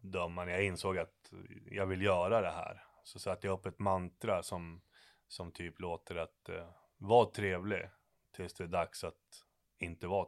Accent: Swedish